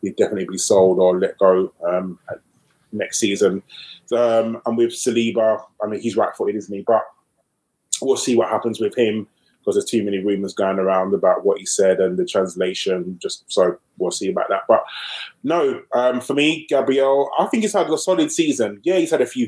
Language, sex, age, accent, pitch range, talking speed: English, male, 20-39, British, 105-130 Hz, 200 wpm